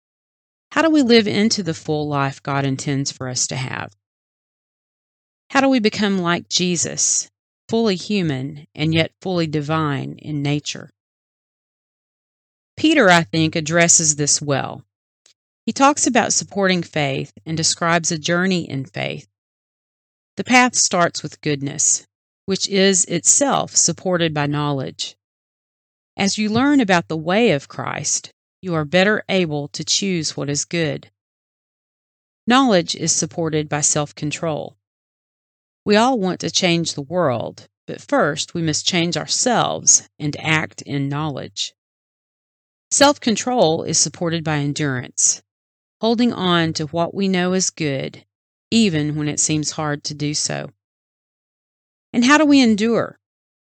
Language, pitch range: English, 140-190 Hz